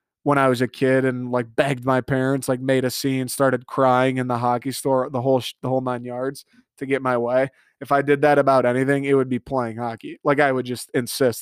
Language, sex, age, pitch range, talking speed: English, male, 20-39, 125-140 Hz, 240 wpm